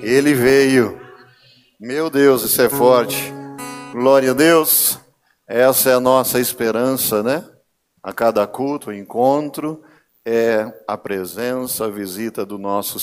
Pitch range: 110-135 Hz